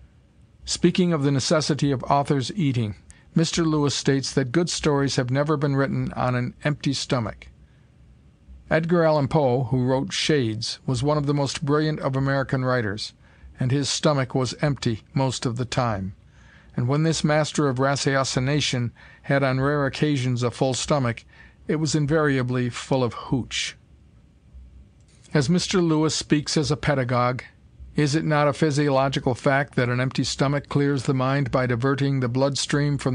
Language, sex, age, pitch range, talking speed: English, male, 50-69, 125-150 Hz, 160 wpm